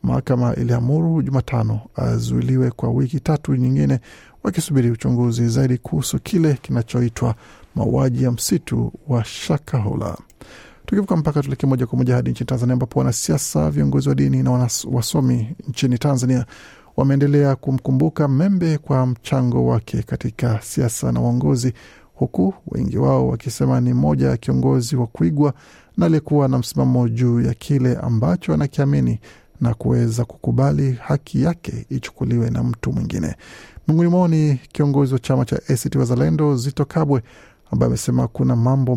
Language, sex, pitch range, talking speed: Swahili, male, 115-145 Hz, 140 wpm